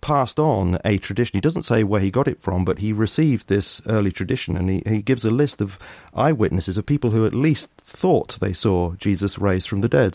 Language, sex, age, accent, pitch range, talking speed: English, male, 40-59, British, 95-125 Hz, 230 wpm